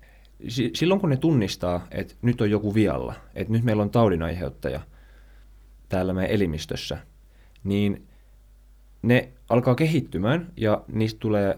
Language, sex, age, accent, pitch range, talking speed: Finnish, male, 20-39, native, 90-120 Hz, 125 wpm